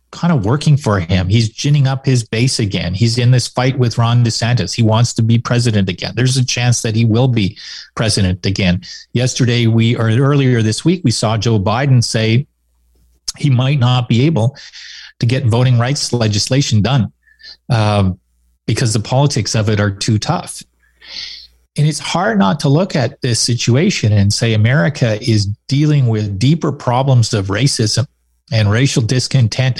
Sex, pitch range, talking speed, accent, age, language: male, 105-130 Hz, 175 wpm, American, 40-59, English